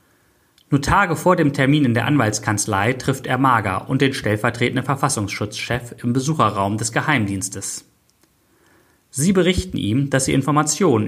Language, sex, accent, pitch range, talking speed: German, male, German, 105-145 Hz, 135 wpm